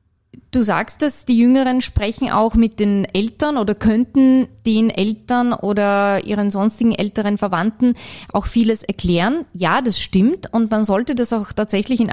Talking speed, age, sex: 160 wpm, 20-39, female